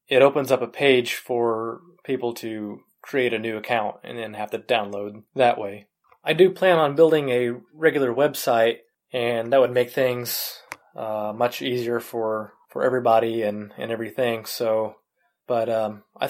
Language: English